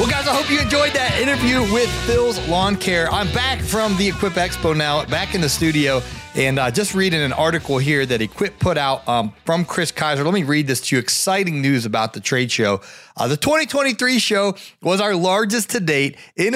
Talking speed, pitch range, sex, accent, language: 220 wpm, 130-200 Hz, male, American, English